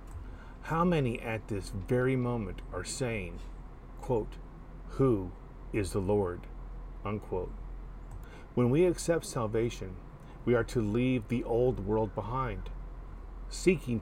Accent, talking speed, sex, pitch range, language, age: American, 115 wpm, male, 110-135 Hz, English, 40-59